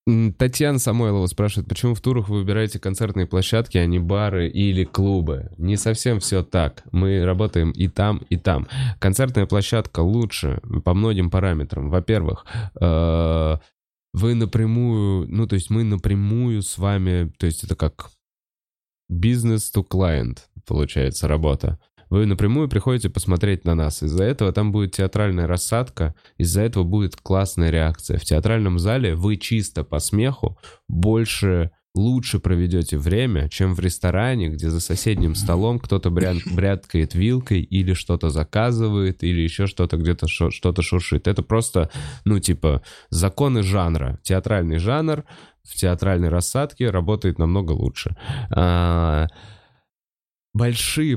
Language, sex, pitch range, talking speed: Russian, male, 85-105 Hz, 130 wpm